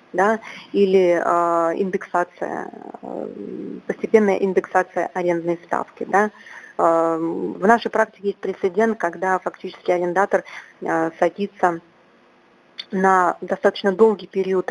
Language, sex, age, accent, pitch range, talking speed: Russian, female, 30-49, native, 175-210 Hz, 100 wpm